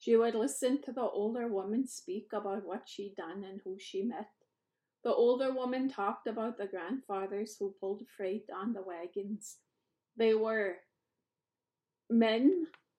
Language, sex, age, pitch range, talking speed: English, female, 30-49, 195-235 Hz, 150 wpm